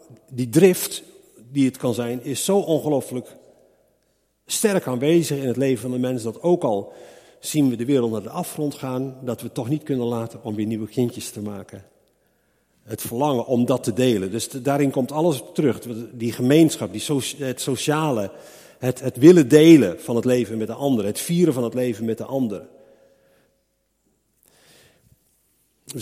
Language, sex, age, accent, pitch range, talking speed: English, male, 50-69, Dutch, 120-155 Hz, 180 wpm